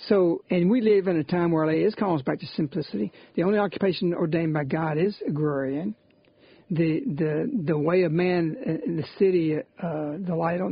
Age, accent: 60-79, American